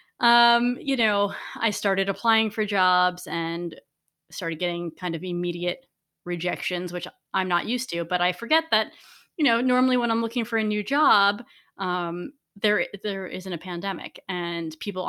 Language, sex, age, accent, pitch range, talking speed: English, female, 20-39, American, 180-235 Hz, 165 wpm